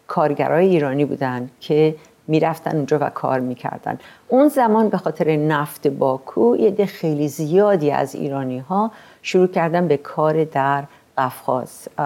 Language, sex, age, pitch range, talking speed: Persian, female, 50-69, 150-215 Hz, 140 wpm